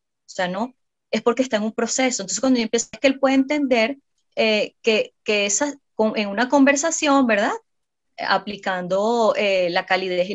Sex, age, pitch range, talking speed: female, 20-39, 190-255 Hz, 180 wpm